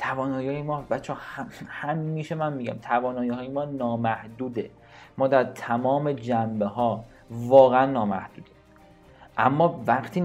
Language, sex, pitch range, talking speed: Persian, male, 115-155 Hz, 115 wpm